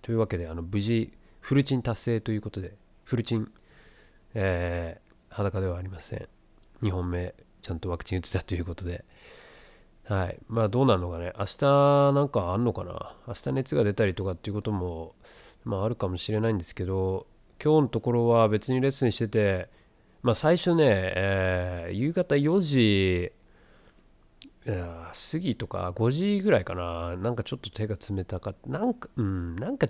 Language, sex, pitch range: Japanese, male, 95-120 Hz